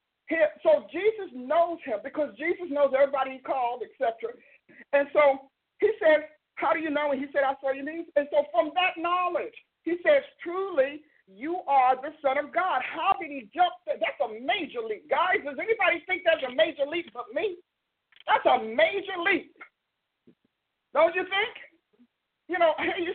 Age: 50-69